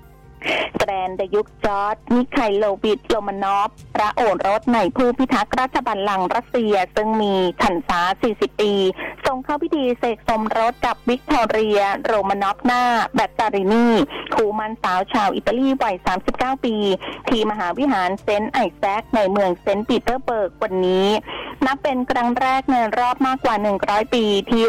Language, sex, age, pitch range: Thai, female, 20-39, 195-255 Hz